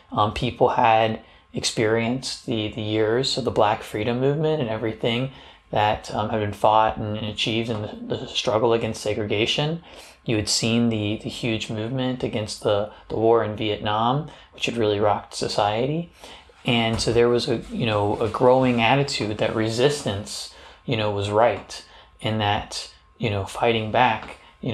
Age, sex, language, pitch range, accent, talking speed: 30-49, male, English, 110-125 Hz, American, 165 wpm